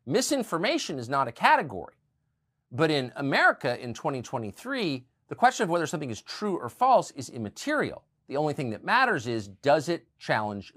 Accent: American